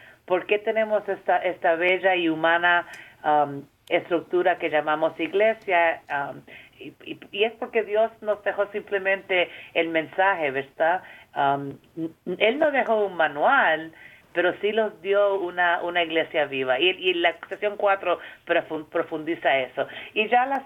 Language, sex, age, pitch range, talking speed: Spanish, female, 40-59, 160-200 Hz, 145 wpm